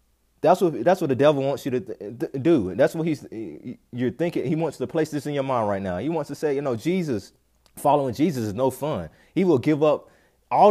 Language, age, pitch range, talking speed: English, 30-49, 125-160 Hz, 235 wpm